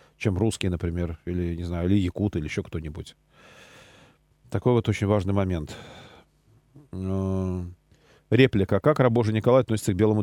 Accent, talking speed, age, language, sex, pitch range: native, 135 wpm, 40-59, Russian, male, 95-125 Hz